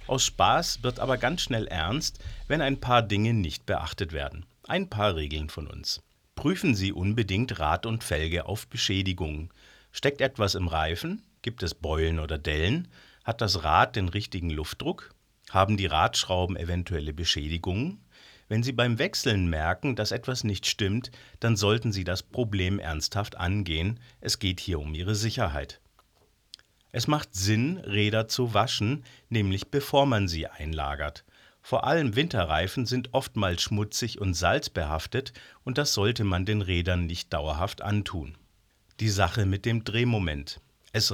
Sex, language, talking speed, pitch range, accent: male, German, 150 wpm, 90-120 Hz, German